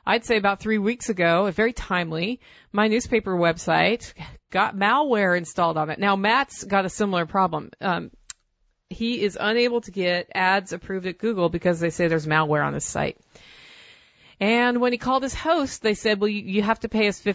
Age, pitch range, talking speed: 40-59, 170-215 Hz, 195 wpm